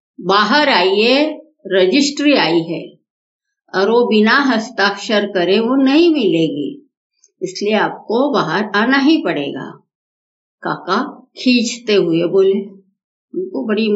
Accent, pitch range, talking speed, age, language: native, 190-295 Hz, 105 wpm, 50-69, Hindi